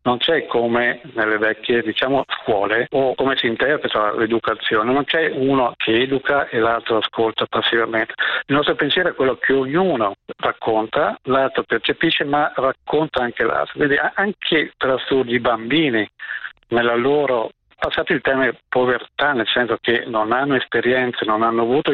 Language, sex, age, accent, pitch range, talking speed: Italian, male, 50-69, native, 115-145 Hz, 150 wpm